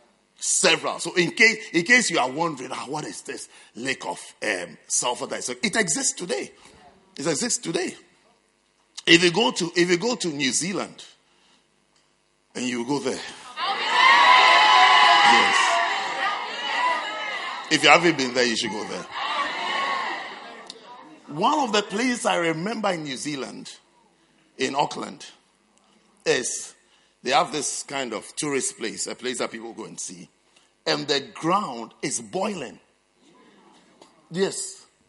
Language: English